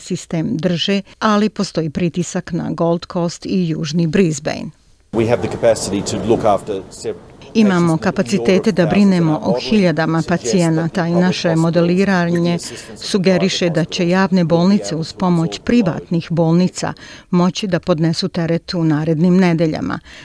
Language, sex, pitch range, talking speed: Croatian, female, 165-185 Hz, 110 wpm